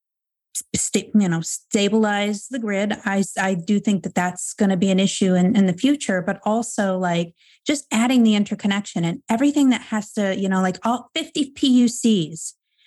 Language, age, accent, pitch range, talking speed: English, 30-49, American, 185-225 Hz, 175 wpm